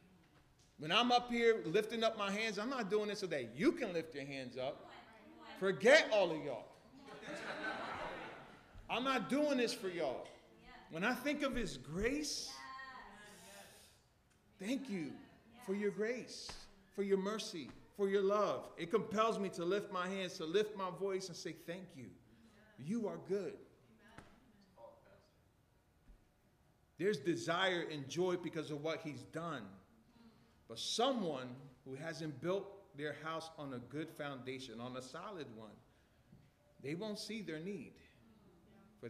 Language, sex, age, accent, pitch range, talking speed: English, male, 40-59, American, 135-205 Hz, 145 wpm